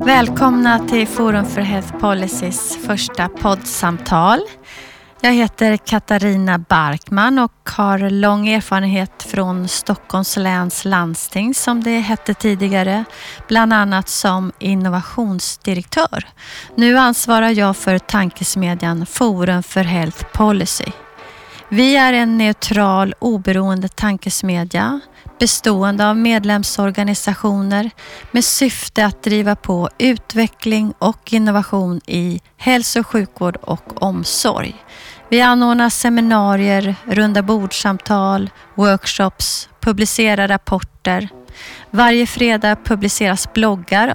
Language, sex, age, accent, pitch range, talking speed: Swedish, female, 30-49, native, 190-225 Hz, 100 wpm